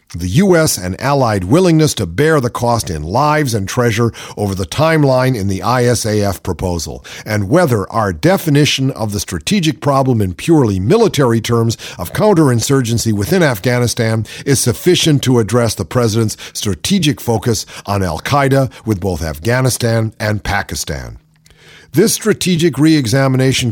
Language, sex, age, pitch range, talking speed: English, male, 50-69, 110-150 Hz, 135 wpm